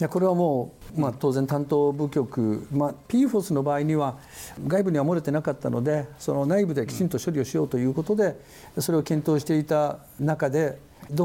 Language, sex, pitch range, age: Japanese, male, 140-190 Hz, 60-79